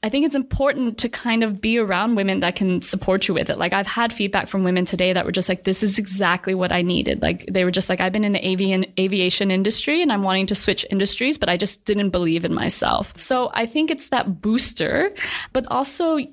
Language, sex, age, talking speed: English, female, 20-39, 240 wpm